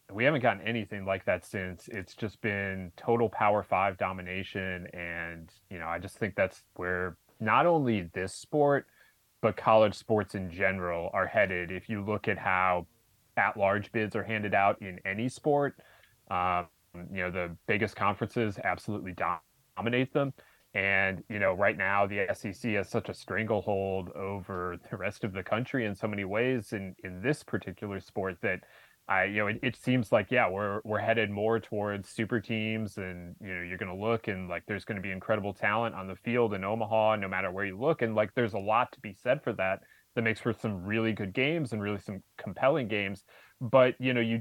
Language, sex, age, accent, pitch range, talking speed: English, male, 20-39, American, 95-110 Hz, 200 wpm